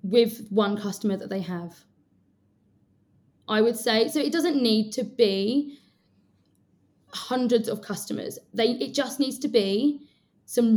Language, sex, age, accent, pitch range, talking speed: English, female, 20-39, British, 210-245 Hz, 140 wpm